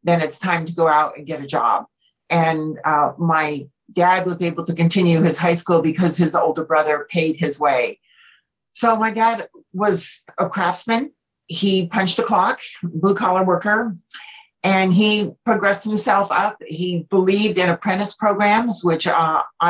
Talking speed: 160 wpm